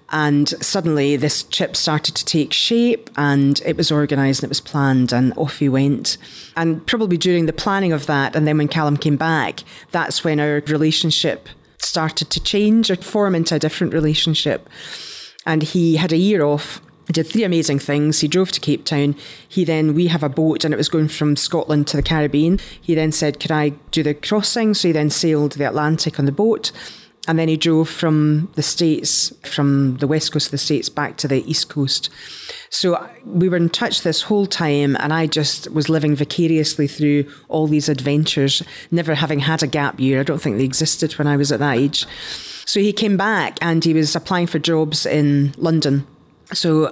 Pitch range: 145-170 Hz